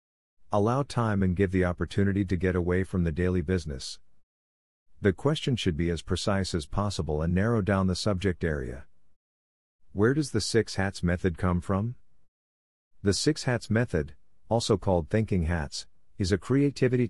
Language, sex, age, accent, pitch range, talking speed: English, male, 50-69, American, 85-105 Hz, 160 wpm